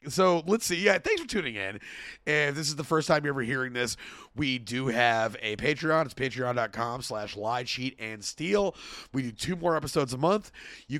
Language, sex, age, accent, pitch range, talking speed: English, male, 30-49, American, 115-160 Hz, 215 wpm